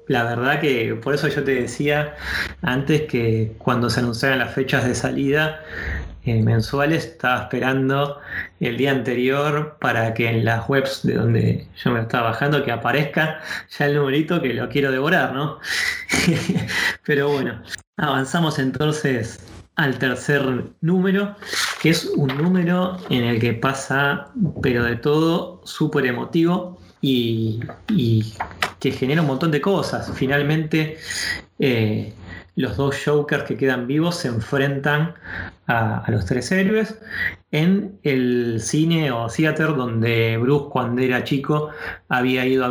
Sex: male